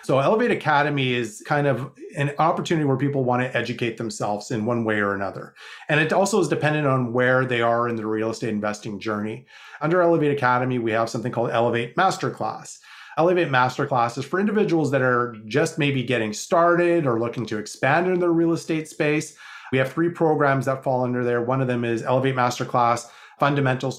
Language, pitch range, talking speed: English, 115-145 Hz, 195 wpm